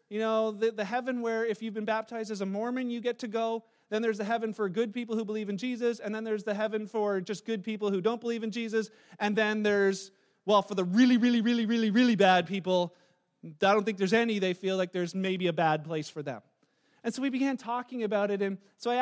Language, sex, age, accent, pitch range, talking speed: English, male, 30-49, American, 195-265 Hz, 250 wpm